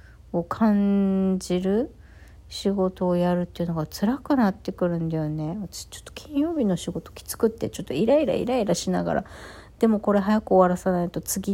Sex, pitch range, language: female, 165-250 Hz, Japanese